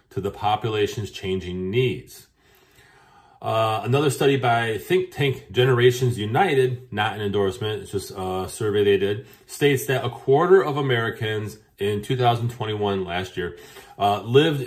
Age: 30-49